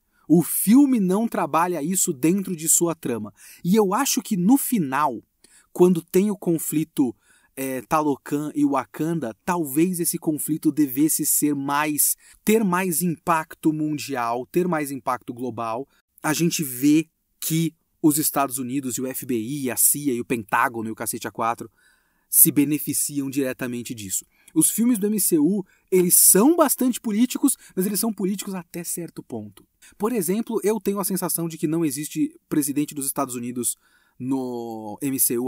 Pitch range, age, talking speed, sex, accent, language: 140-190 Hz, 30-49, 155 wpm, male, Brazilian, Portuguese